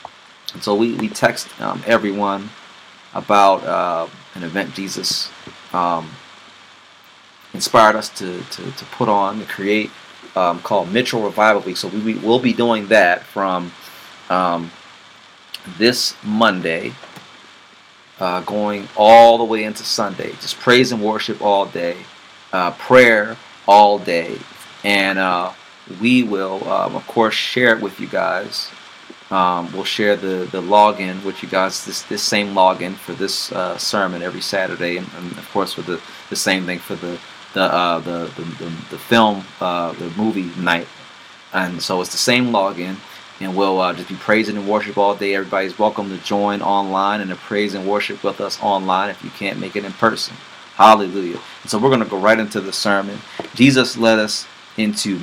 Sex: male